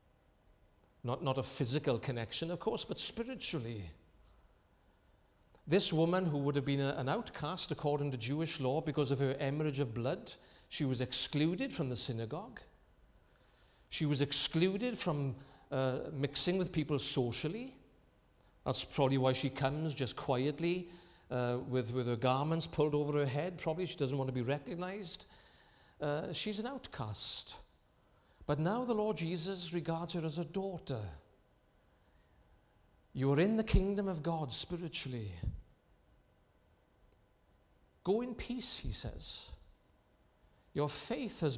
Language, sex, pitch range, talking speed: English, male, 130-180 Hz, 140 wpm